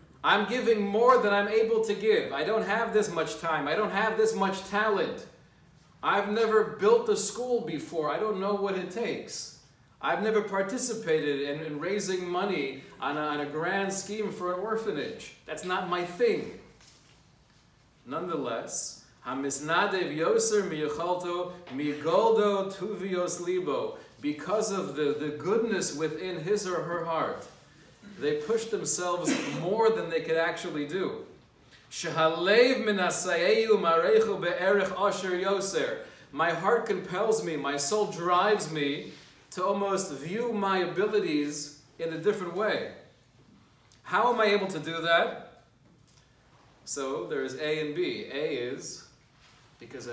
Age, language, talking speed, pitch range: 30-49, English, 125 wpm, 155-215 Hz